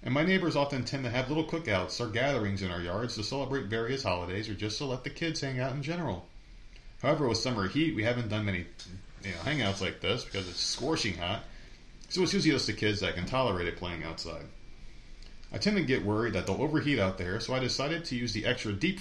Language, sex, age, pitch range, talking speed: English, male, 30-49, 95-135 Hz, 230 wpm